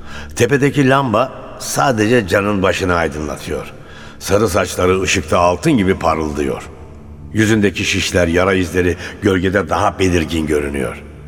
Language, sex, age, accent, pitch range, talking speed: Turkish, male, 60-79, native, 80-110 Hz, 105 wpm